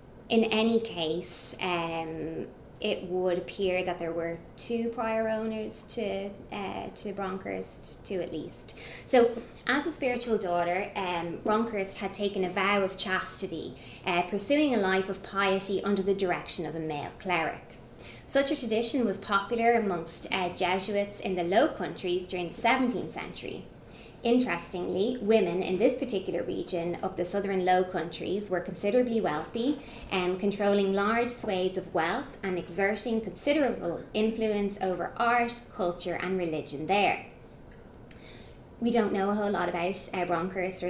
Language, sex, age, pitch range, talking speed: English, female, 20-39, 175-215 Hz, 150 wpm